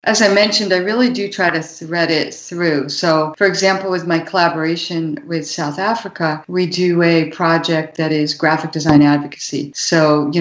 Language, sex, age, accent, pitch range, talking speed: English, female, 50-69, American, 150-170 Hz, 180 wpm